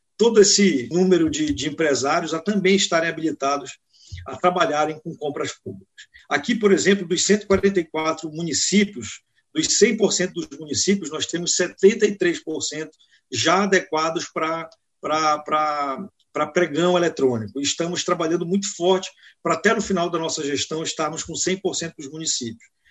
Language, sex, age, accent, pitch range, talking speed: Portuguese, male, 50-69, Brazilian, 150-185 Hz, 135 wpm